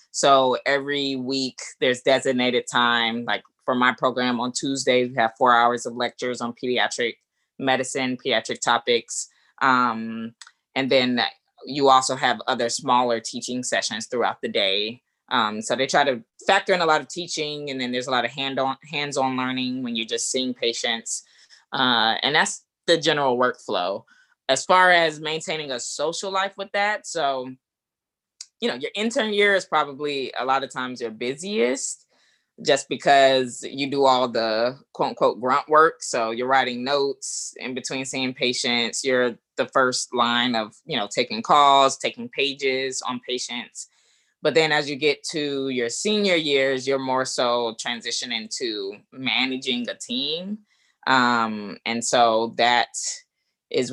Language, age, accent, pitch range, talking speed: English, 20-39, American, 125-145 Hz, 160 wpm